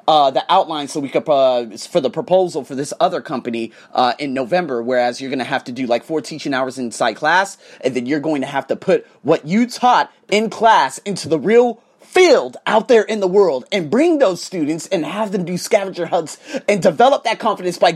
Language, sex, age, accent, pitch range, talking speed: English, male, 30-49, American, 165-245 Hz, 225 wpm